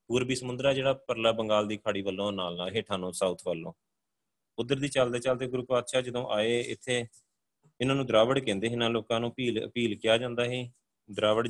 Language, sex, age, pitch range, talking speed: Punjabi, male, 30-49, 110-125 Hz, 190 wpm